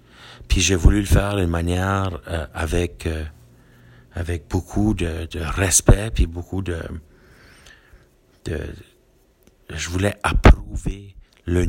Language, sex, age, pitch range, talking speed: French, male, 50-69, 85-100 Hz, 120 wpm